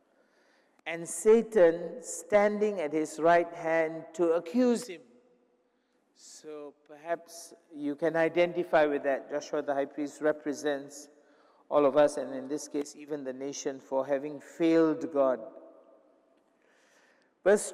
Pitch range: 150-185 Hz